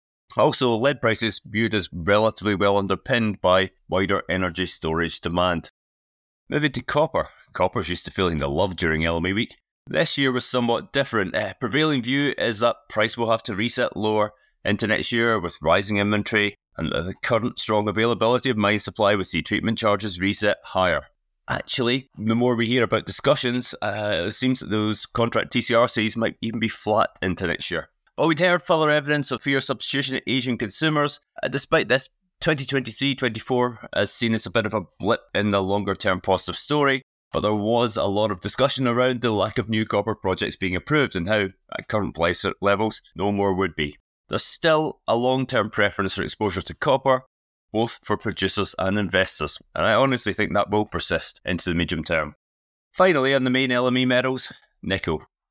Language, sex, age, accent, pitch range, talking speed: English, male, 30-49, British, 95-125 Hz, 185 wpm